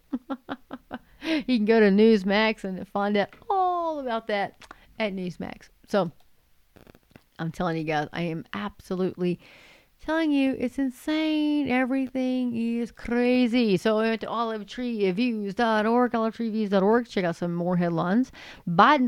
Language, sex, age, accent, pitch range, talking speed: English, female, 40-59, American, 200-250 Hz, 125 wpm